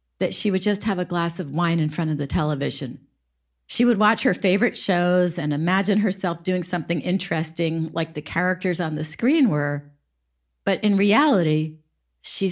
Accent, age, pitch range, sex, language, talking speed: American, 50-69, 155-210 Hz, female, English, 175 wpm